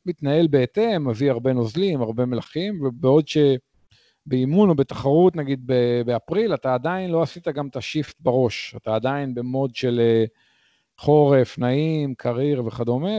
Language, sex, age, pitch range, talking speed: Hebrew, male, 40-59, 115-145 Hz, 130 wpm